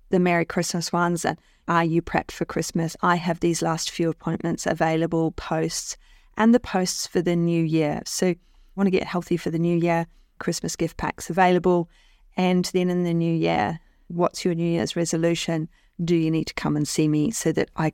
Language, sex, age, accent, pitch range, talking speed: English, female, 40-59, Australian, 160-185 Hz, 200 wpm